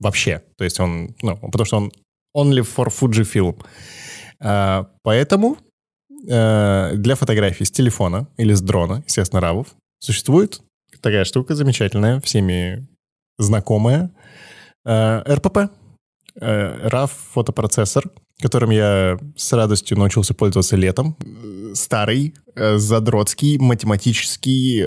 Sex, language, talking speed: male, Russian, 95 wpm